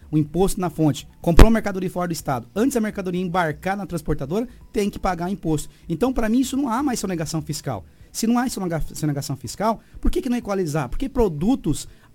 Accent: Brazilian